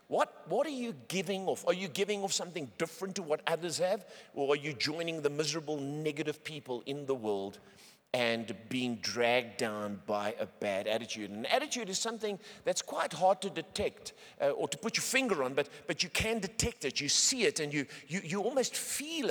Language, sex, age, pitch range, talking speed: English, male, 50-69, 140-205 Hz, 205 wpm